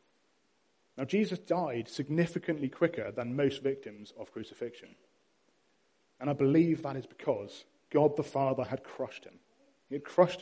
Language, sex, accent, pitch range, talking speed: English, male, British, 125-165 Hz, 145 wpm